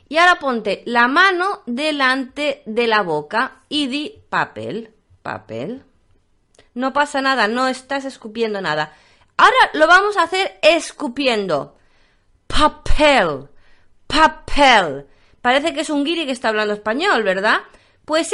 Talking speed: 130 wpm